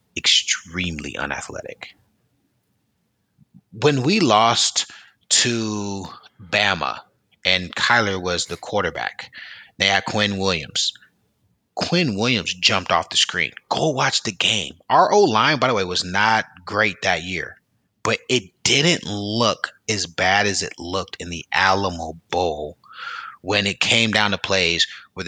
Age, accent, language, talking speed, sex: 30-49, American, English, 135 wpm, male